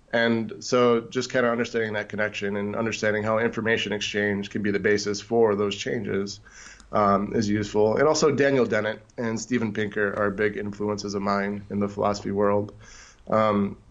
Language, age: English, 20-39